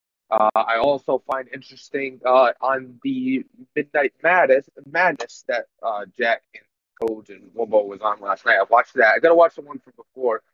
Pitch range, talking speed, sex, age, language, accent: 115-170 Hz, 195 wpm, male, 30-49, English, American